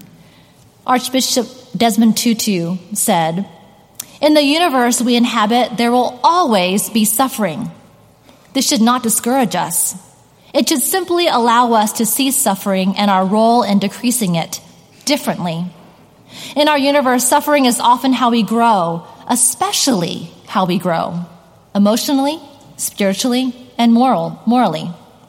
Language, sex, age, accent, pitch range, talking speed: English, female, 30-49, American, 200-255 Hz, 125 wpm